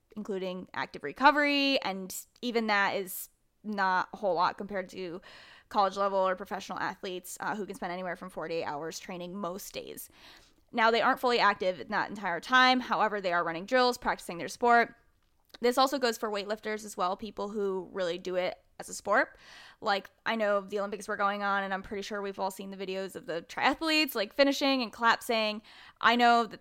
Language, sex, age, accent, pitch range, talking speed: English, female, 10-29, American, 190-245 Hz, 195 wpm